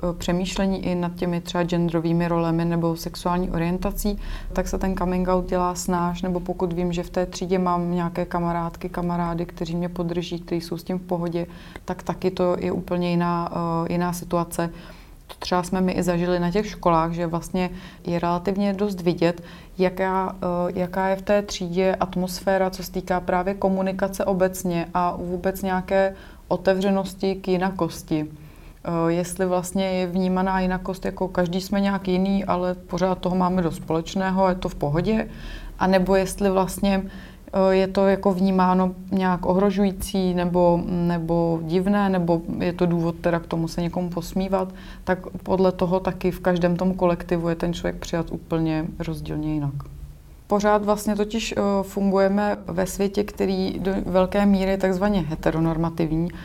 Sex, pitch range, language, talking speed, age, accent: female, 175-190 Hz, Czech, 160 wpm, 30-49, native